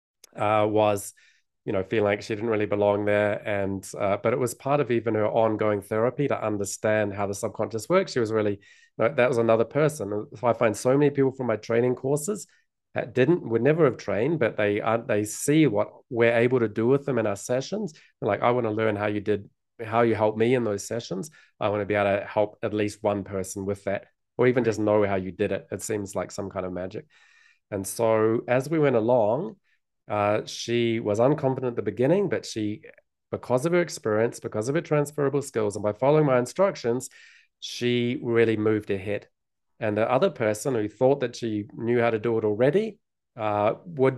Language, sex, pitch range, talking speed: English, male, 105-125 Hz, 215 wpm